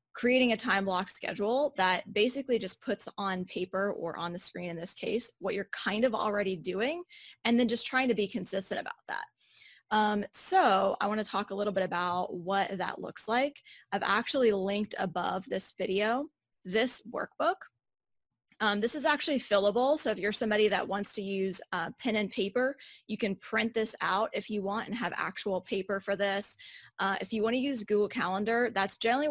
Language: English